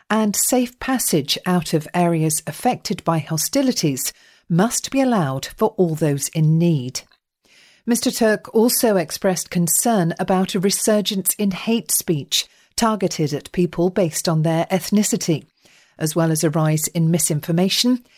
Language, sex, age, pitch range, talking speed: English, female, 40-59, 165-220 Hz, 140 wpm